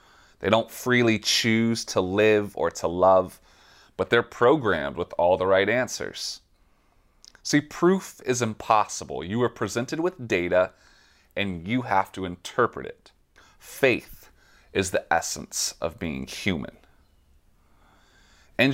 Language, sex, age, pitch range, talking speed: English, male, 30-49, 95-120 Hz, 130 wpm